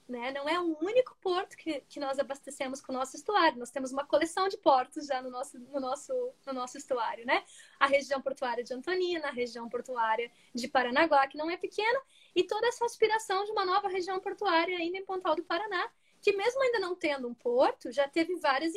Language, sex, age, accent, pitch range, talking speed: Portuguese, female, 20-39, Brazilian, 270-375 Hz, 215 wpm